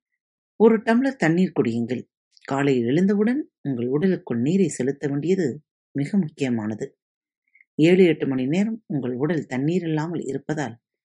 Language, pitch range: Tamil, 125-185 Hz